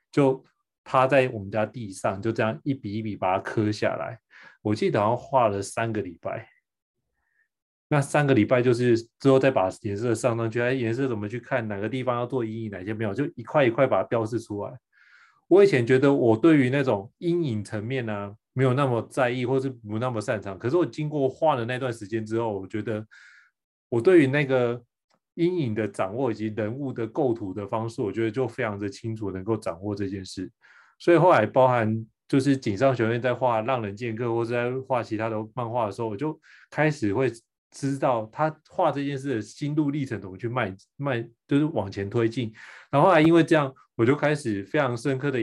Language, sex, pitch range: Chinese, male, 110-135 Hz